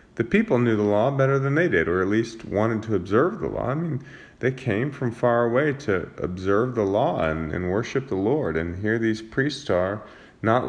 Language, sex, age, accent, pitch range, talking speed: English, male, 30-49, American, 95-135 Hz, 220 wpm